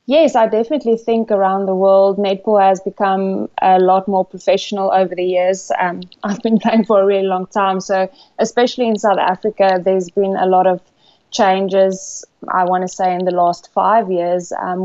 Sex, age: female, 20-39